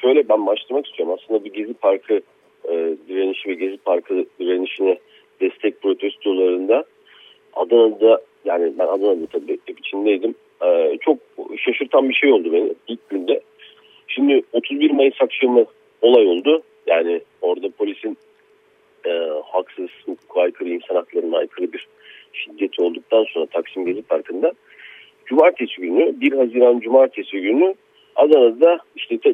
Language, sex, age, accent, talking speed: Turkish, male, 50-69, native, 125 wpm